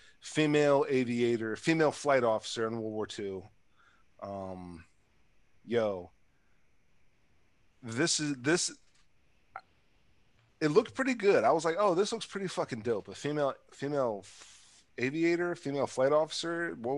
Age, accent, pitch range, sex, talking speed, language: 30-49, American, 110-150 Hz, male, 125 wpm, English